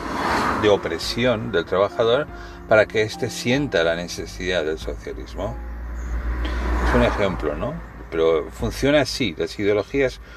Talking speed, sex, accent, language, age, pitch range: 120 wpm, male, Spanish, Spanish, 40-59, 85-115 Hz